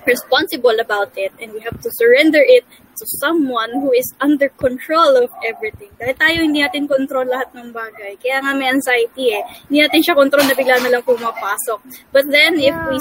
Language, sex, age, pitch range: English, female, 20-39, 235-295 Hz